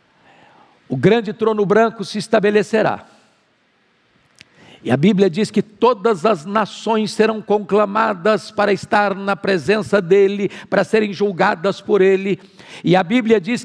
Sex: male